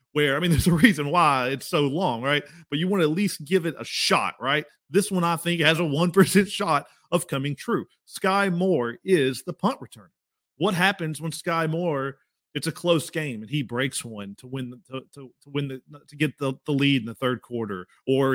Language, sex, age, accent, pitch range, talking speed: English, male, 30-49, American, 135-175 Hz, 230 wpm